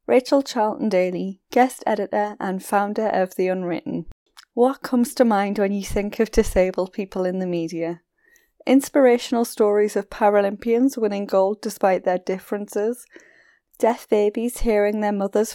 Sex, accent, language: female, British, English